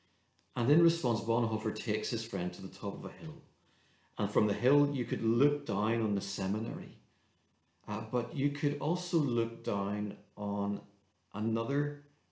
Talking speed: 160 wpm